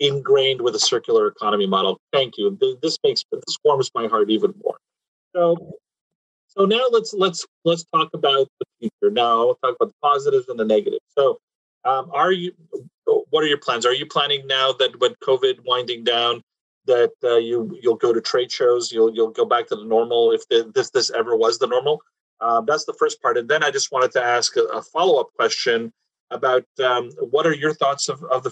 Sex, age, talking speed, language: male, 30-49, 210 wpm, English